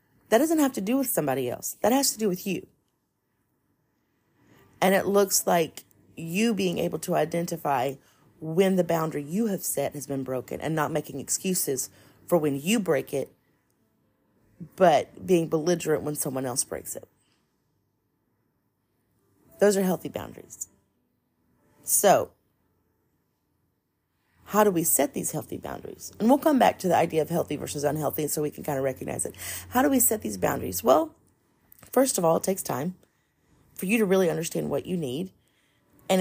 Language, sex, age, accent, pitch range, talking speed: English, female, 30-49, American, 145-205 Hz, 165 wpm